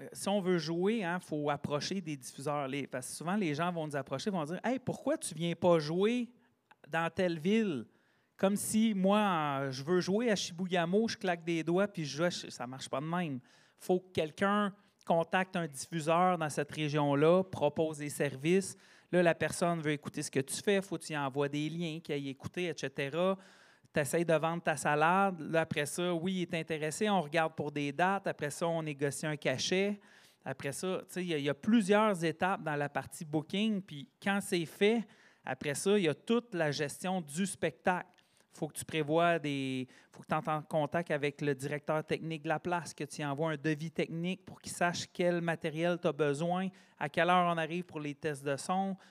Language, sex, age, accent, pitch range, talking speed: French, male, 30-49, Canadian, 150-185 Hz, 220 wpm